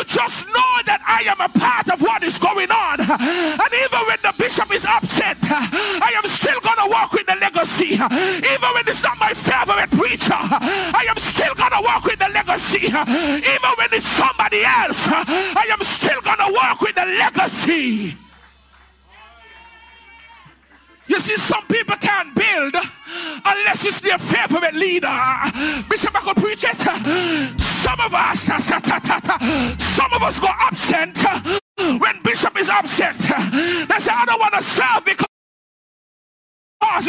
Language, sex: English, male